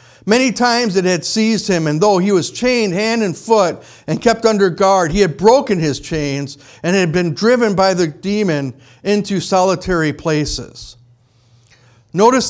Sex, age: male, 50-69